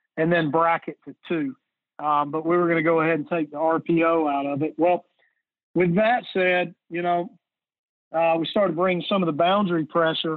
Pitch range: 155-175 Hz